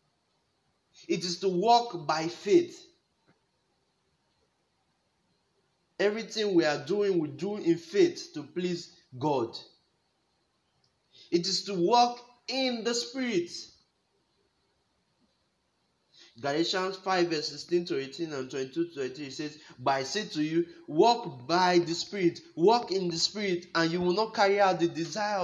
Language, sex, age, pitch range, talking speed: English, male, 30-49, 165-215 Hz, 125 wpm